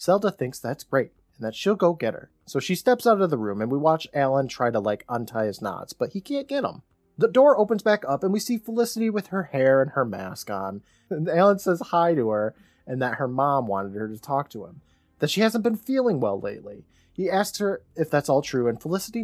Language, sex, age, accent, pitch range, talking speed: English, male, 20-39, American, 125-185 Hz, 250 wpm